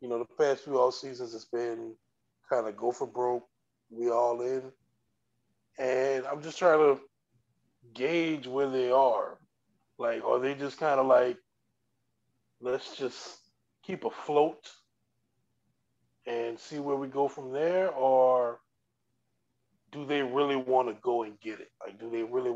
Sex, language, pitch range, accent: male, English, 120-145 Hz, American